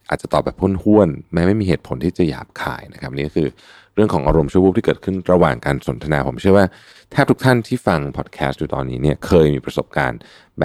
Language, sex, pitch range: Thai, male, 70-95 Hz